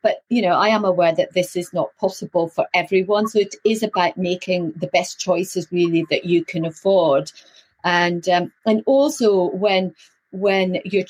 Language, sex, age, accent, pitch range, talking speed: English, female, 40-59, British, 170-210 Hz, 180 wpm